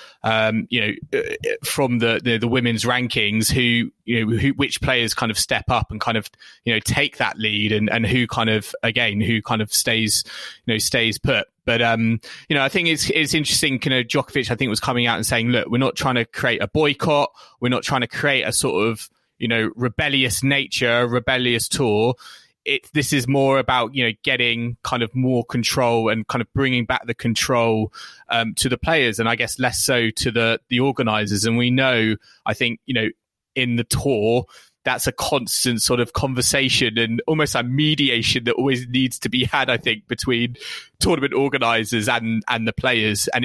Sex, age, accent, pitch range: male, 20-39, British, 115-130 Hz